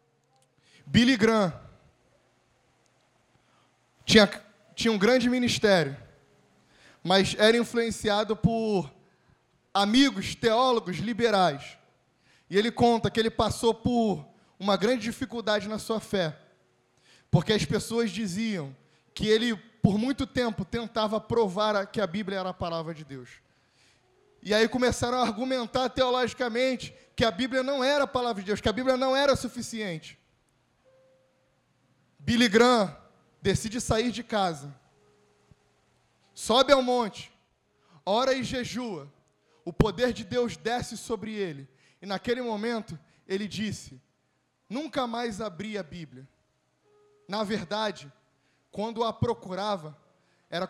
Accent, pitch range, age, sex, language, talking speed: Brazilian, 175-235 Hz, 20-39, male, Portuguese, 120 wpm